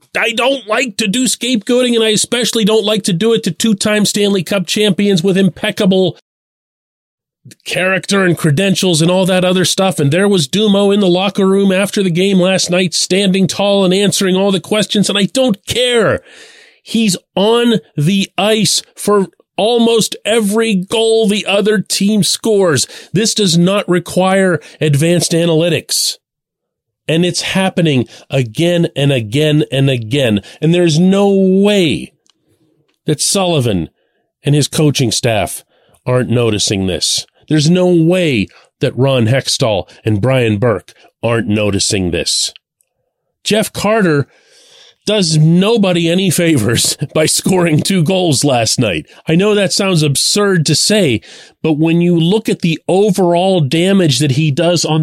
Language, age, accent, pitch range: English, 30-49, American, 155-205 Hz